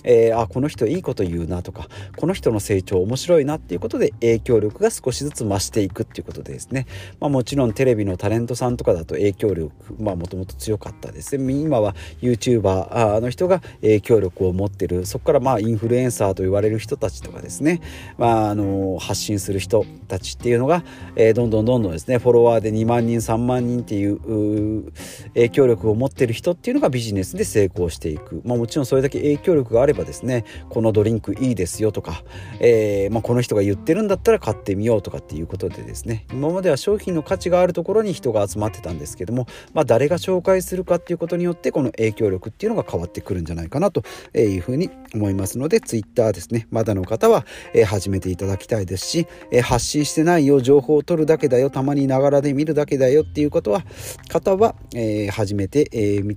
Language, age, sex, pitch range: Japanese, 40-59, male, 100-140 Hz